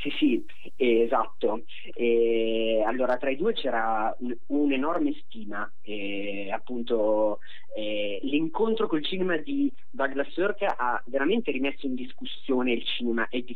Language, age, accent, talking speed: Italian, 30-49, native, 140 wpm